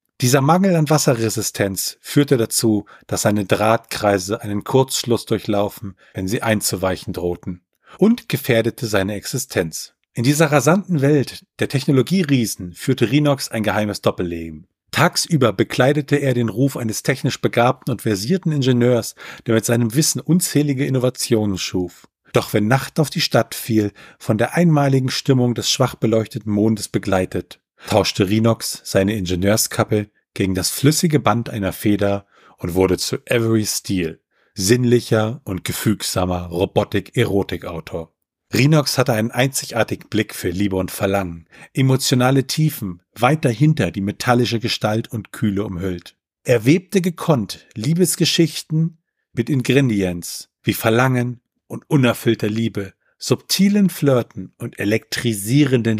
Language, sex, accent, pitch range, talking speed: German, male, German, 100-135 Hz, 125 wpm